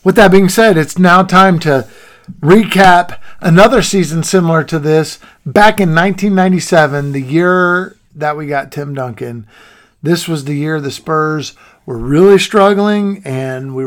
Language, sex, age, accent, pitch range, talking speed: English, male, 50-69, American, 140-185 Hz, 150 wpm